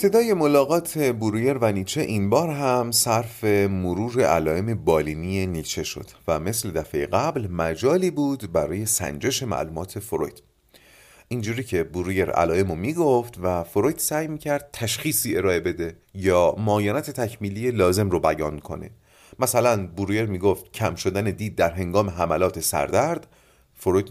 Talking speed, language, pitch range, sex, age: 135 wpm, Persian, 90-130 Hz, male, 30-49